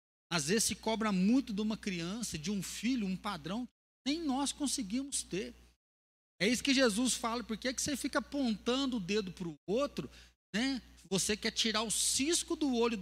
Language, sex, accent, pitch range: Portuguese, male, Brazilian, 190-240 Hz